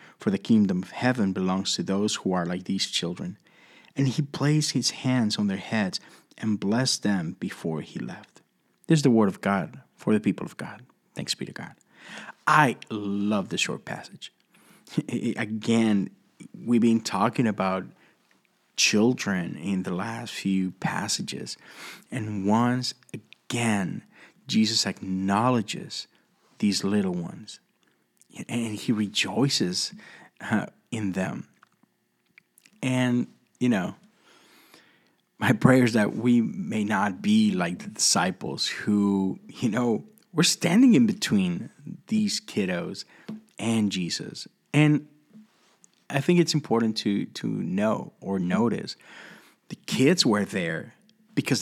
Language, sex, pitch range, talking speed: English, male, 100-155 Hz, 130 wpm